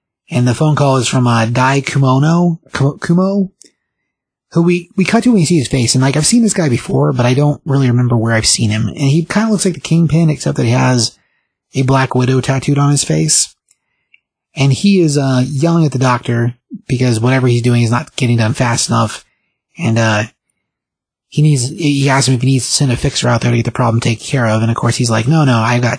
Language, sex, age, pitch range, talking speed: English, male, 30-49, 120-155 Hz, 240 wpm